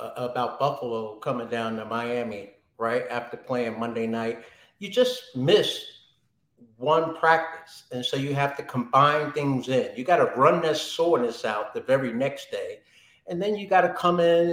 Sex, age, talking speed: male, 50-69, 175 wpm